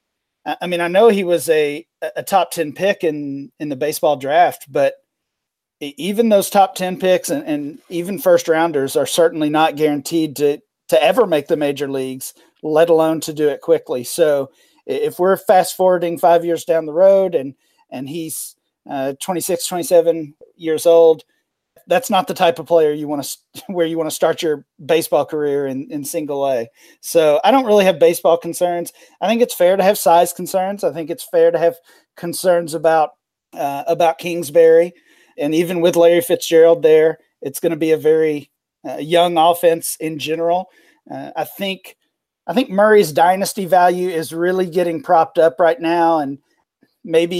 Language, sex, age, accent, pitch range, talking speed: English, male, 40-59, American, 155-180 Hz, 180 wpm